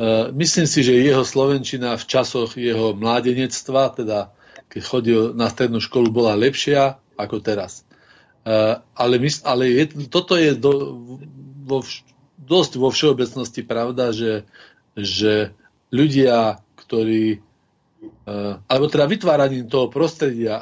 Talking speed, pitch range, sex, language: 115 wpm, 115-150 Hz, male, Slovak